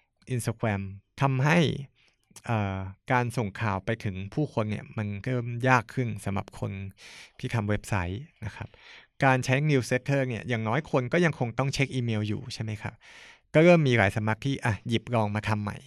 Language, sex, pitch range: Thai, male, 105-130 Hz